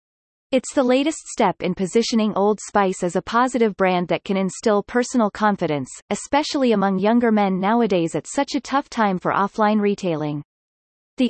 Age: 30-49